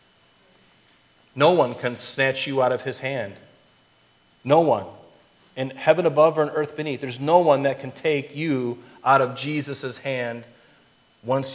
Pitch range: 120-155 Hz